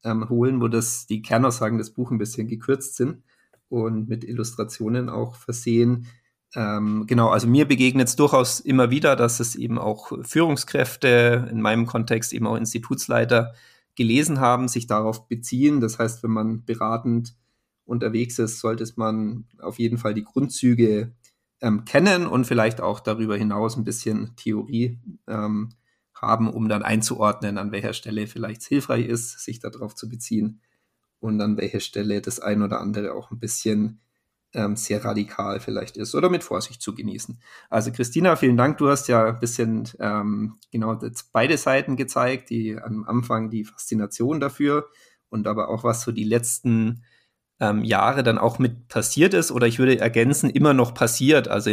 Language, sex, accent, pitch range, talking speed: German, male, German, 110-125 Hz, 170 wpm